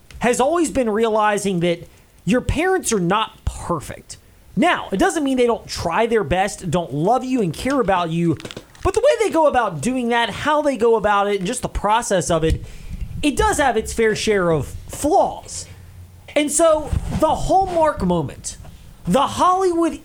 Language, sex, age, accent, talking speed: English, male, 30-49, American, 180 wpm